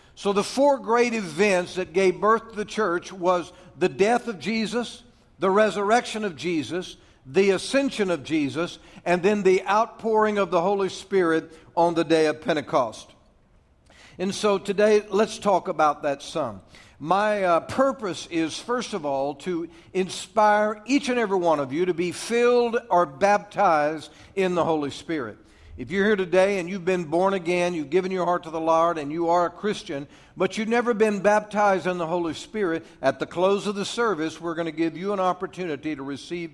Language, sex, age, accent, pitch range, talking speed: English, male, 60-79, American, 155-205 Hz, 185 wpm